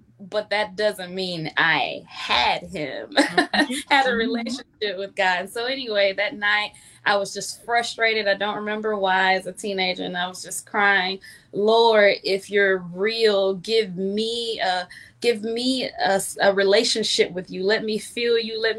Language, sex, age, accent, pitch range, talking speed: English, female, 20-39, American, 180-215 Hz, 165 wpm